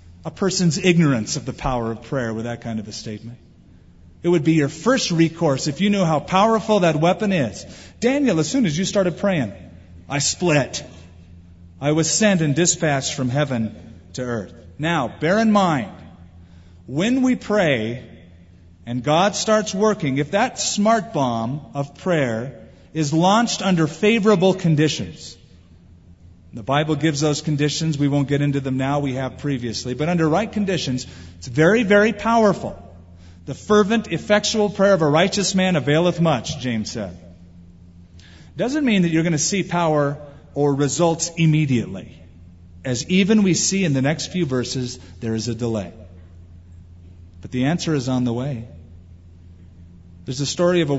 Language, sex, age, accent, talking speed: English, male, 40-59, American, 160 wpm